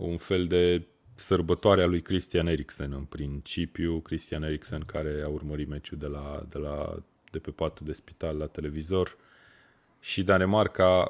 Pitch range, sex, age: 75-85 Hz, male, 30-49